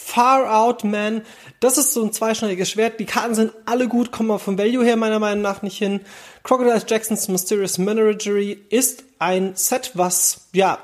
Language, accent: German, German